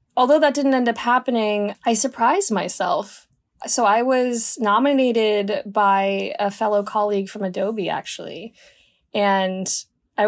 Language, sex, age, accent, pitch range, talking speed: English, female, 20-39, American, 195-240 Hz, 130 wpm